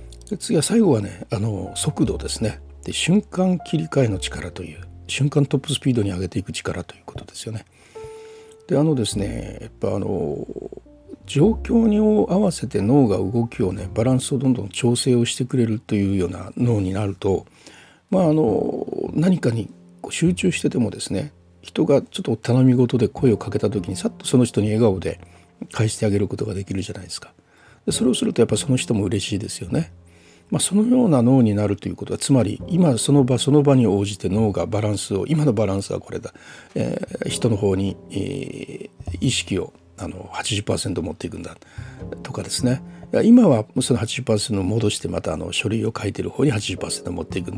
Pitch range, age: 95-135 Hz, 60-79